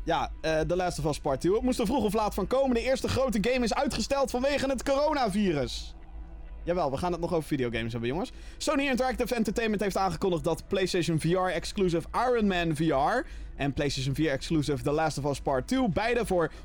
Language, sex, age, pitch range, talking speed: Dutch, male, 20-39, 140-205 Hz, 210 wpm